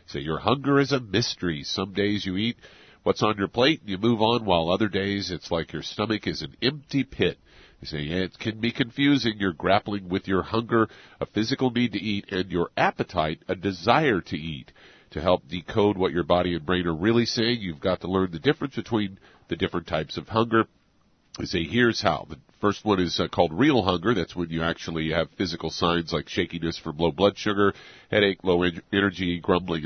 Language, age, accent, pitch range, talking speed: English, 50-69, American, 80-105 Hz, 205 wpm